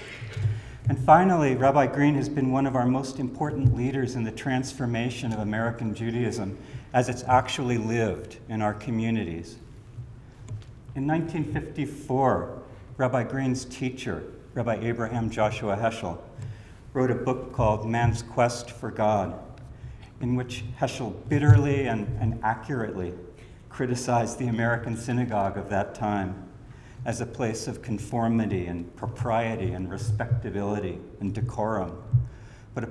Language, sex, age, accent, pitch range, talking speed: English, male, 50-69, American, 110-125 Hz, 125 wpm